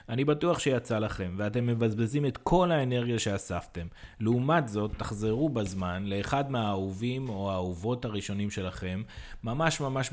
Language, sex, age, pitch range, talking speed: English, male, 30-49, 100-130 Hz, 130 wpm